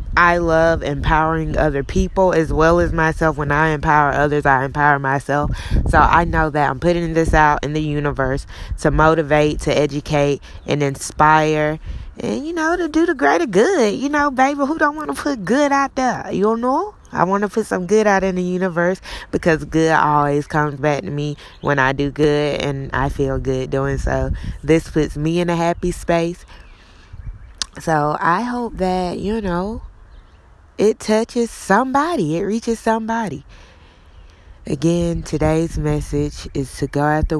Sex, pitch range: female, 135-165 Hz